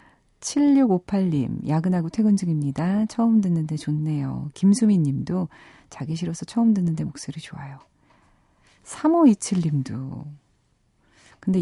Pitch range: 145-185 Hz